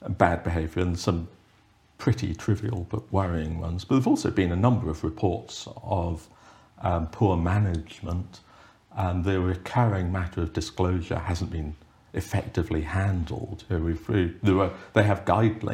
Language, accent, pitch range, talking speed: English, British, 90-115 Hz, 140 wpm